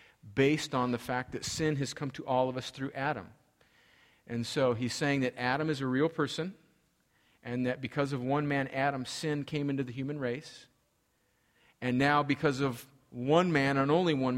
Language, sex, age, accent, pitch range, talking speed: English, male, 40-59, American, 115-140 Hz, 190 wpm